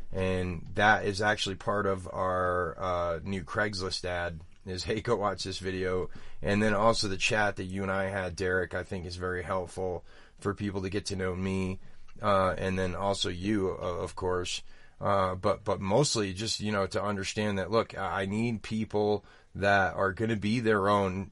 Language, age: English, 30-49